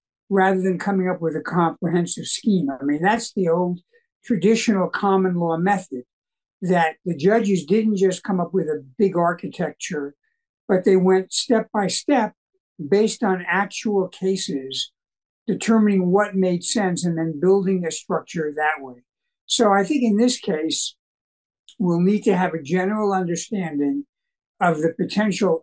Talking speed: 145 wpm